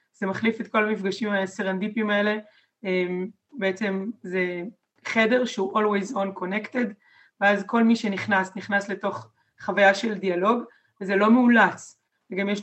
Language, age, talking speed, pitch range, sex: Hebrew, 20-39, 145 wpm, 195-230 Hz, female